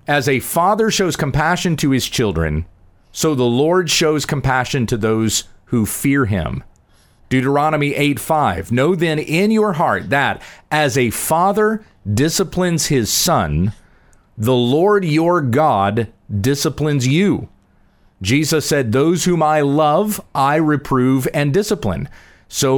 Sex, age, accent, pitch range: male, 40-59, American, 110-155 Hz